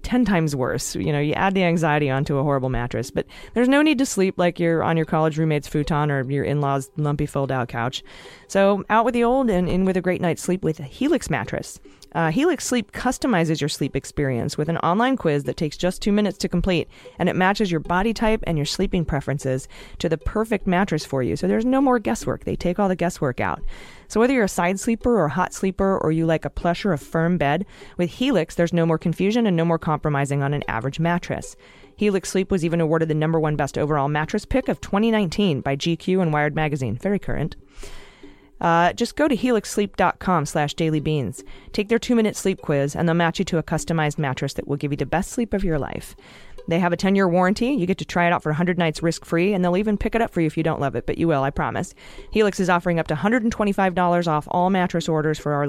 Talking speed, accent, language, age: 245 wpm, American, English, 30-49